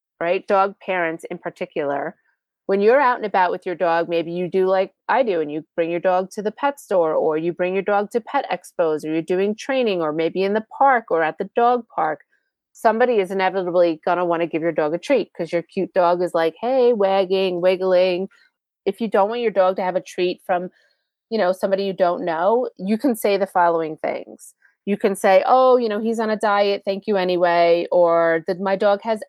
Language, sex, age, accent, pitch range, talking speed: English, female, 30-49, American, 180-230 Hz, 230 wpm